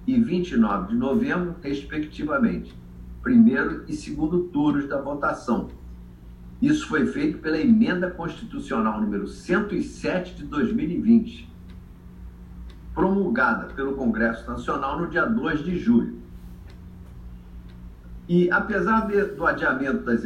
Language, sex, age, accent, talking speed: Portuguese, male, 50-69, Brazilian, 105 wpm